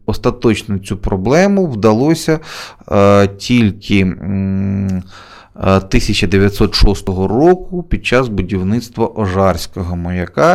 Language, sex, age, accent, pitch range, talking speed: Ukrainian, male, 20-39, native, 95-110 Hz, 80 wpm